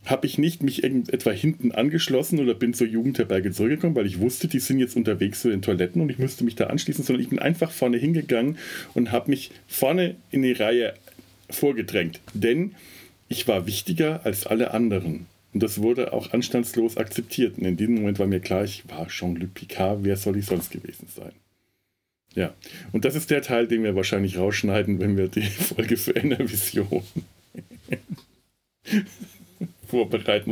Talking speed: 175 wpm